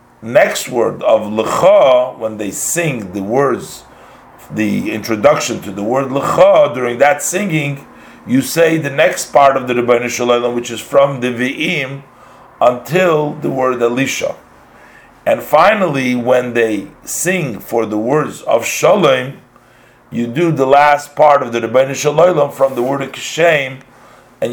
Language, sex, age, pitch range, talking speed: English, male, 50-69, 120-150 Hz, 145 wpm